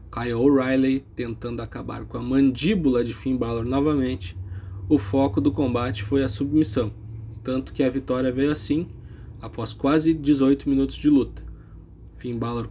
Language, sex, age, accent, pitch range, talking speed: Portuguese, male, 20-39, Brazilian, 115-140 Hz, 150 wpm